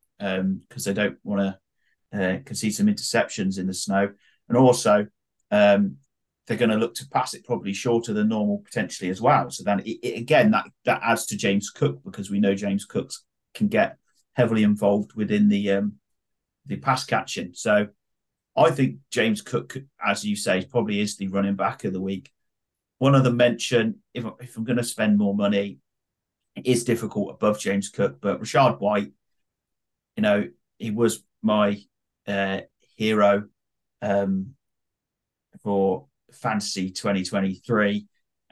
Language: English